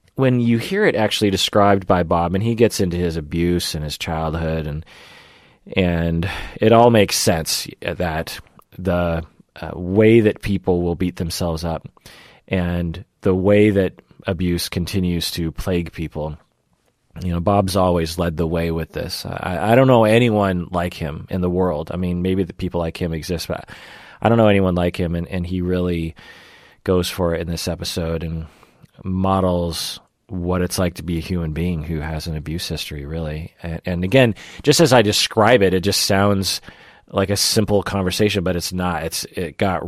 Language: English